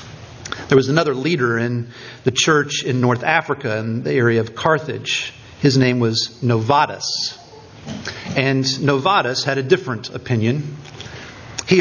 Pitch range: 125-160 Hz